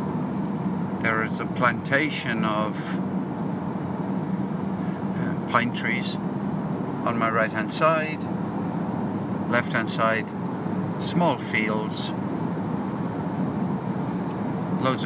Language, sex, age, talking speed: English, male, 50-69, 70 wpm